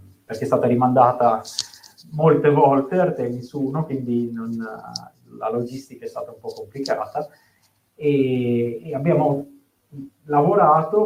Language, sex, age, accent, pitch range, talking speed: Italian, male, 30-49, native, 110-155 Hz, 115 wpm